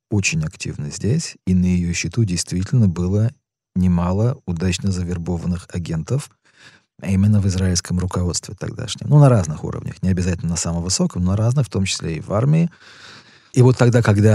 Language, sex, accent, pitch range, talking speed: Russian, male, native, 90-115 Hz, 170 wpm